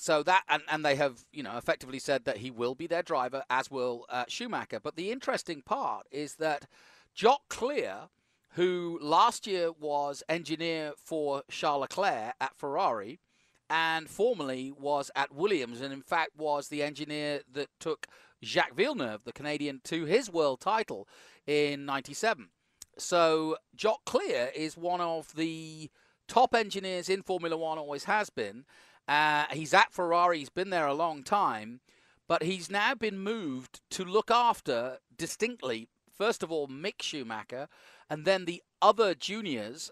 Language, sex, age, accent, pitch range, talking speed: English, male, 40-59, British, 140-170 Hz, 160 wpm